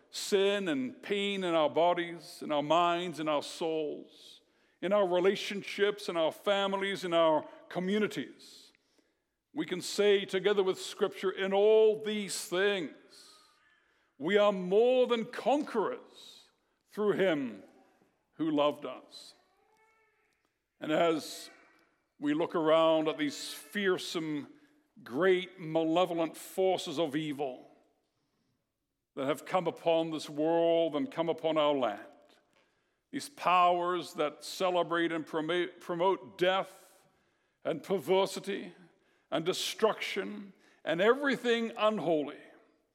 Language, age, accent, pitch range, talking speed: English, 60-79, American, 165-210 Hz, 110 wpm